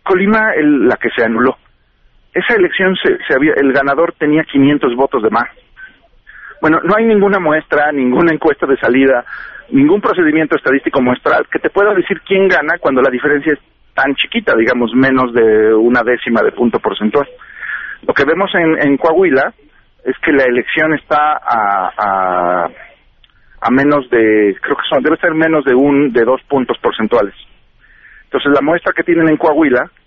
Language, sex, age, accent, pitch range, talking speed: Spanish, male, 40-59, Mexican, 130-185 Hz, 160 wpm